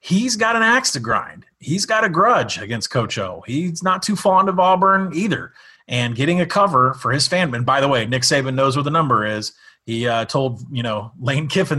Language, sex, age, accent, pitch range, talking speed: English, male, 30-49, American, 120-160 Hz, 230 wpm